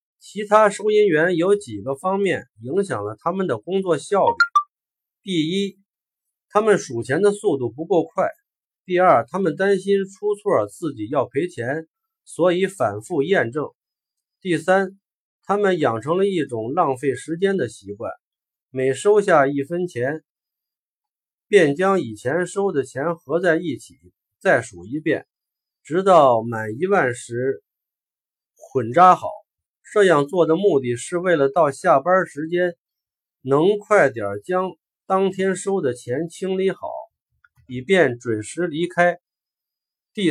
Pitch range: 135-195 Hz